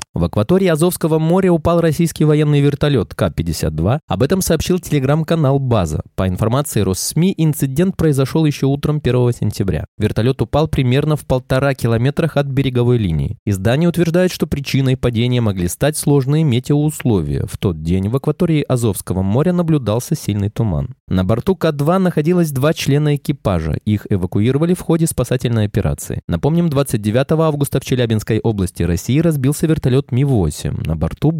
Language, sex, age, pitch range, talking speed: Russian, male, 20-39, 110-155 Hz, 145 wpm